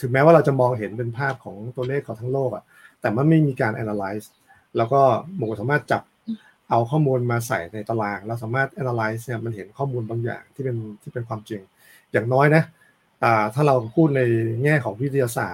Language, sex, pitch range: Thai, male, 115-145 Hz